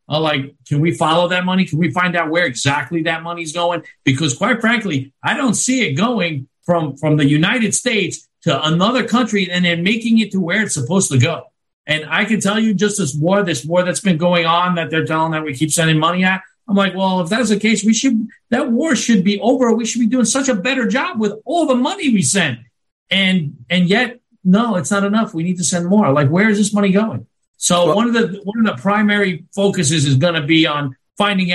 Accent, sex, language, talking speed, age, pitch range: American, male, English, 240 wpm, 50-69, 150-210 Hz